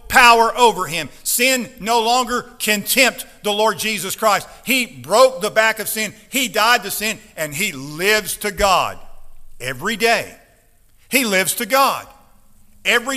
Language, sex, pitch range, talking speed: English, male, 180-245 Hz, 155 wpm